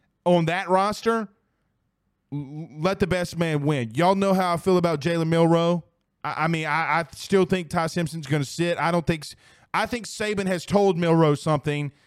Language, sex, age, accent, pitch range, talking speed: English, male, 20-39, American, 150-195 Hz, 190 wpm